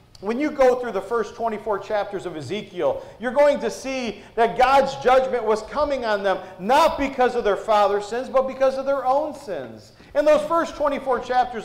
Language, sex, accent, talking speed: English, male, American, 195 wpm